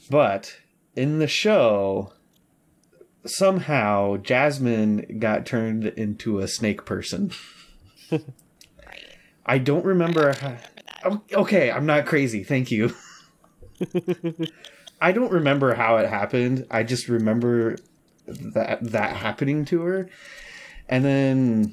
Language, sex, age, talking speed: English, male, 20-39, 100 wpm